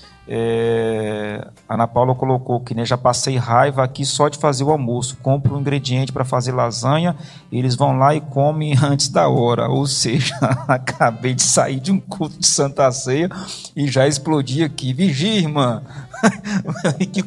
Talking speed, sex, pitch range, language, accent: 165 wpm, male, 135-170 Hz, Portuguese, Brazilian